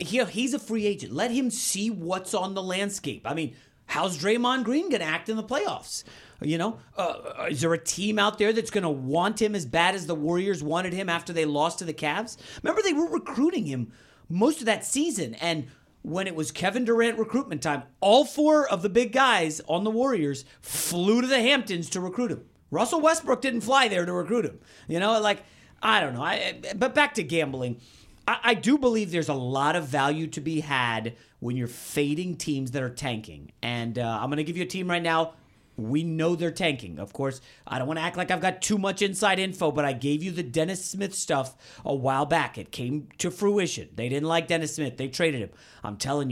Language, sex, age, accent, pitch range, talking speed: English, male, 40-59, American, 140-205 Hz, 225 wpm